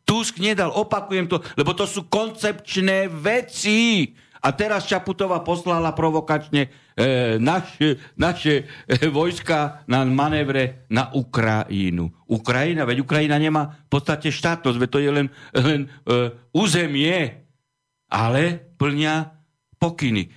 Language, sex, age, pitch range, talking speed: Slovak, male, 60-79, 140-165 Hz, 115 wpm